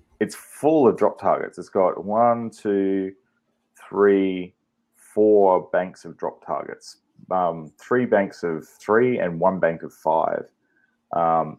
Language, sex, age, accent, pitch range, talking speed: English, male, 30-49, Australian, 85-120 Hz, 135 wpm